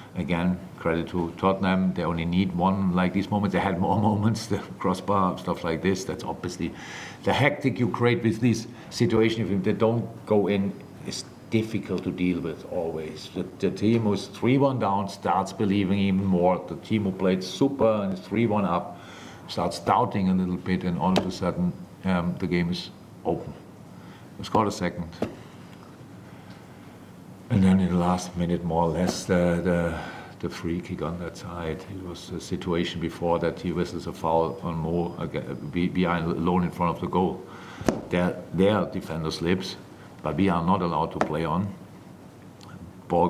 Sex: male